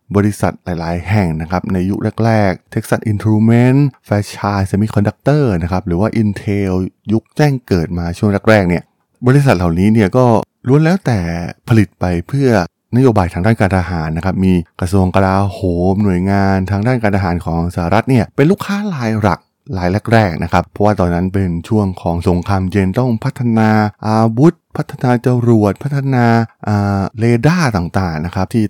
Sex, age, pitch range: male, 20-39, 90-115 Hz